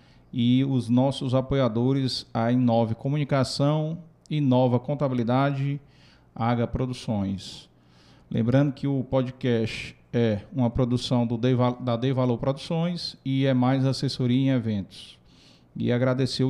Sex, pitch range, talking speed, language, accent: male, 120-140 Hz, 120 wpm, Portuguese, Brazilian